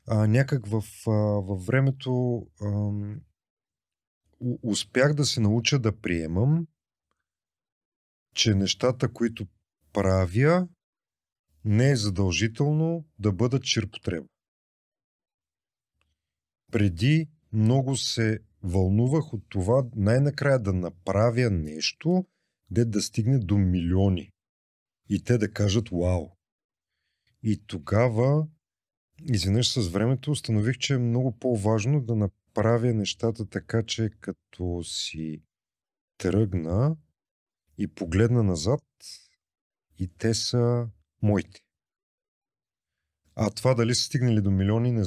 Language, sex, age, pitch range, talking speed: Bulgarian, male, 40-59, 95-125 Hz, 105 wpm